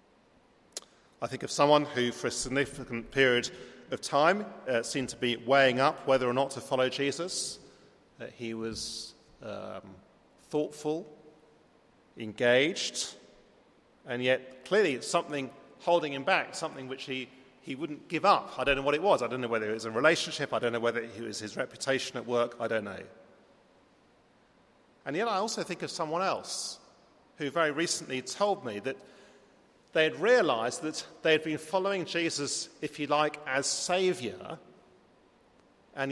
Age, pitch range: 40-59, 115-150 Hz